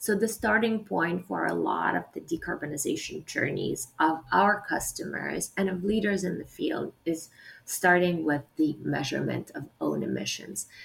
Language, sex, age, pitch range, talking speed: English, female, 30-49, 160-230 Hz, 155 wpm